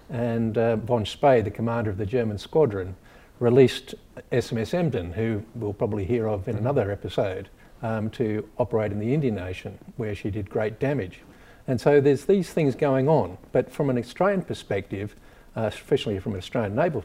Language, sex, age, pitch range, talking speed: English, male, 50-69, 105-125 Hz, 180 wpm